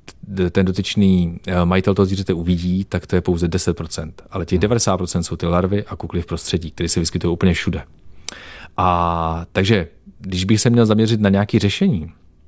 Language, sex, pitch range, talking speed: Czech, male, 85-100 Hz, 175 wpm